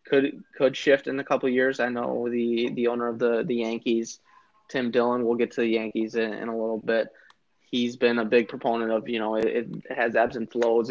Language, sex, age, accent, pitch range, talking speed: English, male, 20-39, American, 115-135 Hz, 235 wpm